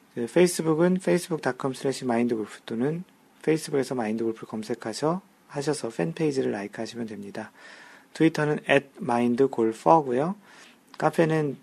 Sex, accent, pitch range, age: male, native, 115-160 Hz, 40-59